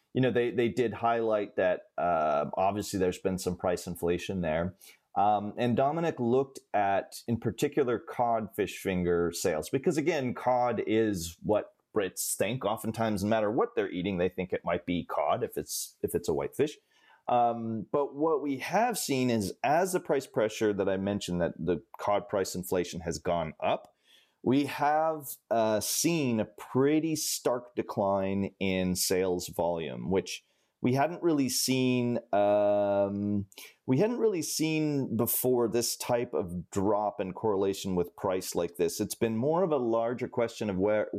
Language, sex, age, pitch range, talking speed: English, male, 30-49, 100-130 Hz, 170 wpm